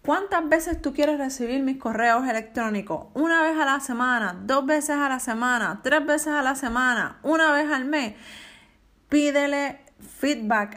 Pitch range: 210-300 Hz